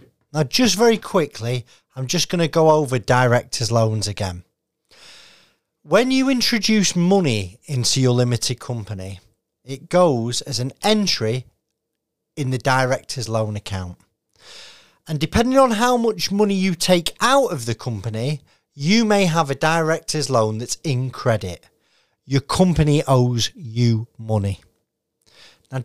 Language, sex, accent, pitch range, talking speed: English, male, British, 110-150 Hz, 135 wpm